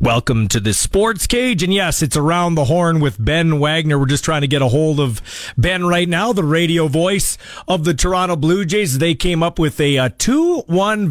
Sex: male